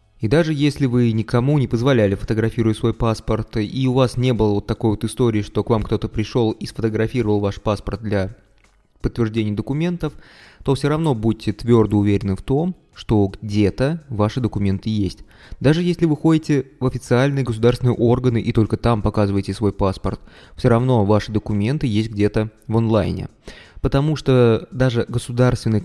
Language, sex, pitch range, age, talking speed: Russian, male, 110-135 Hz, 20-39, 160 wpm